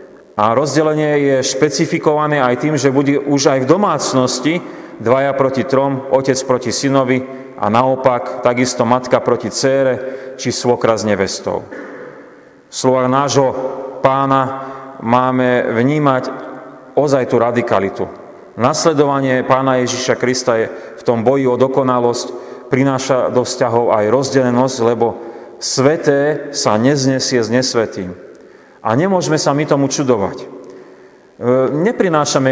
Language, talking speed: Slovak, 115 wpm